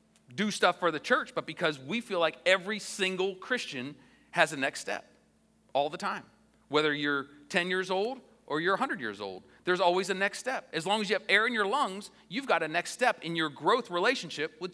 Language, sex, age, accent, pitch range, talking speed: English, male, 40-59, American, 175-230 Hz, 220 wpm